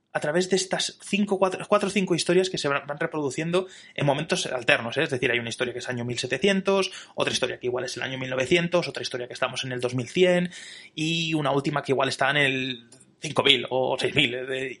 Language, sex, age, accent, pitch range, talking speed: Spanish, male, 20-39, Spanish, 125-175 Hz, 215 wpm